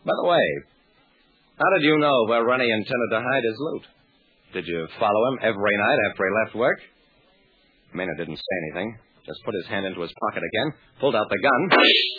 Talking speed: 195 wpm